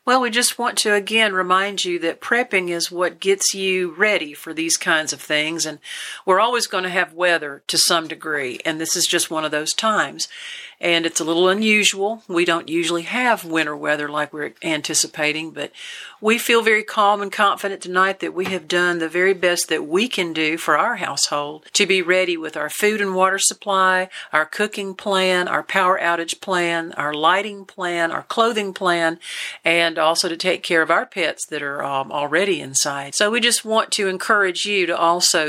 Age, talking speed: 50-69, 200 wpm